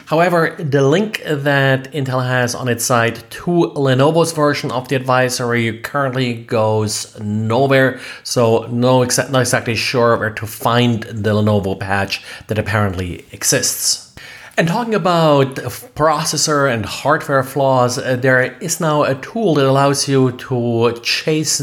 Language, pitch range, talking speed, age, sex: English, 115-145 Hz, 140 wpm, 30-49, male